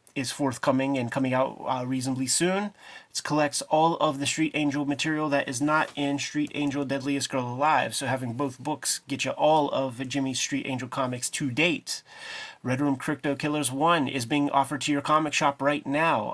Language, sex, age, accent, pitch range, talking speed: English, male, 30-49, American, 130-150 Hz, 195 wpm